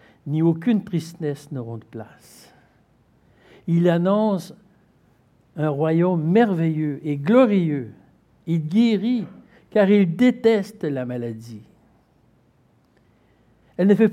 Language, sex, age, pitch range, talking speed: French, male, 60-79, 135-180 Hz, 100 wpm